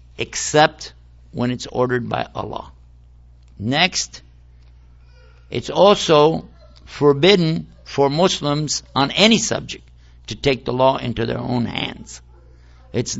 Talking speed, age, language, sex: 110 wpm, 60-79, English, male